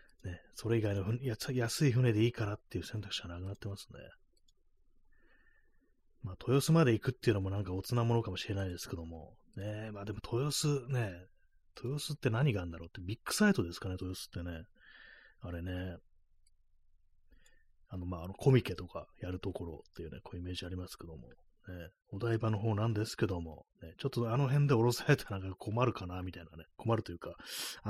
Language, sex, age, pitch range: Japanese, male, 30-49, 85-115 Hz